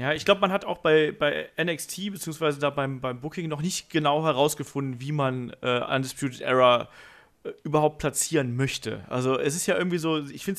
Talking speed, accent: 200 wpm, German